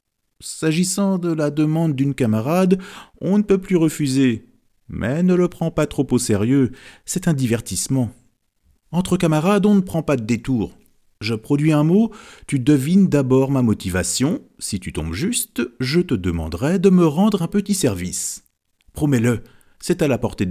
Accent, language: French, French